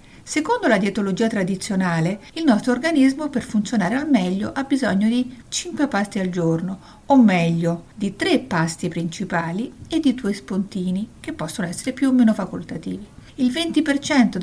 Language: Italian